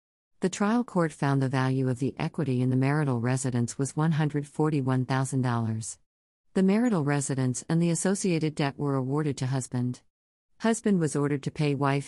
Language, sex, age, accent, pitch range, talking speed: English, female, 50-69, American, 130-160 Hz, 160 wpm